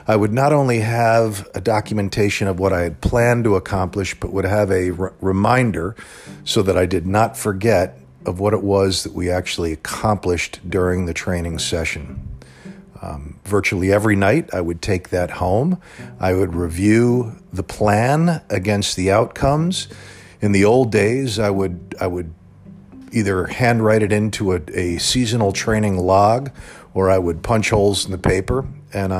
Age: 50-69